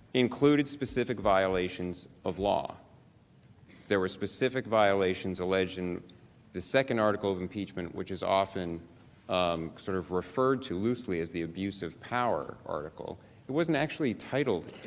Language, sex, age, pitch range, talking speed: English, male, 40-59, 95-115 Hz, 140 wpm